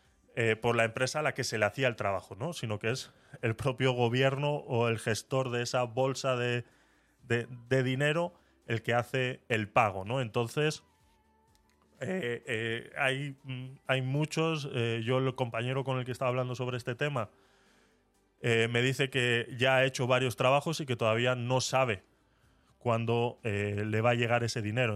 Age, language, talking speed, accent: 20-39, Spanish, 180 wpm, Spanish